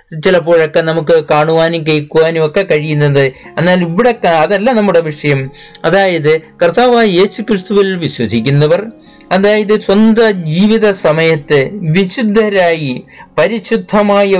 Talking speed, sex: 80 wpm, male